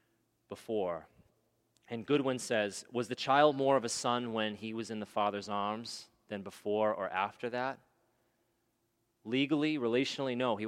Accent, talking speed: American, 150 wpm